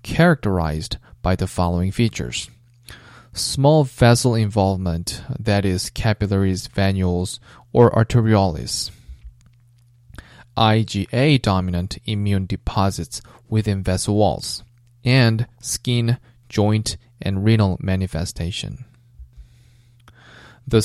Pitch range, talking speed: 100-120 Hz, 80 wpm